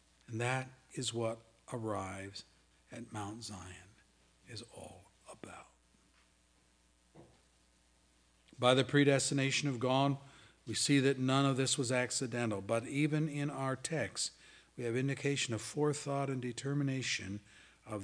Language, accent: English, American